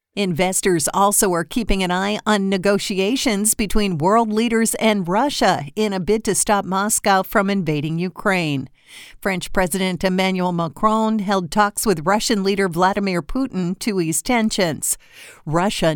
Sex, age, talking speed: female, 50-69, 140 wpm